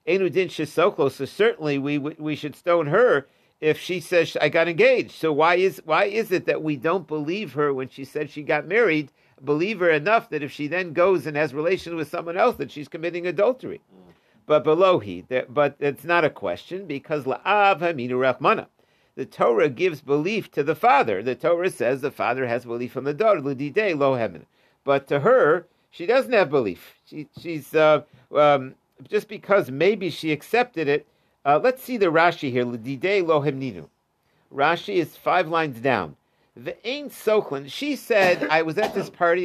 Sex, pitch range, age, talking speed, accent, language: male, 145-195 Hz, 50-69, 190 wpm, American, English